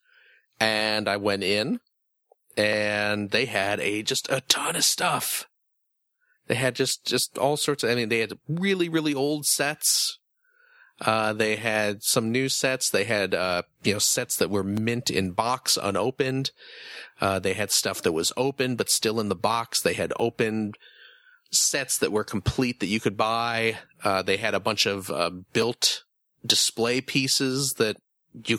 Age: 40-59